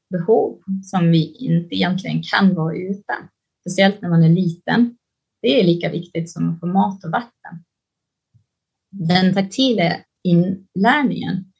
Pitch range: 170-215 Hz